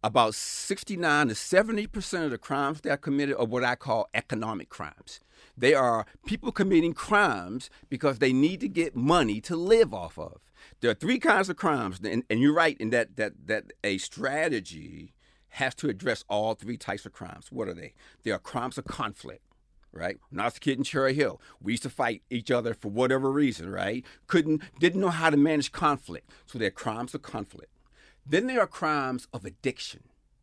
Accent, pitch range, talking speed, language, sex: American, 120-170 Hz, 195 wpm, English, male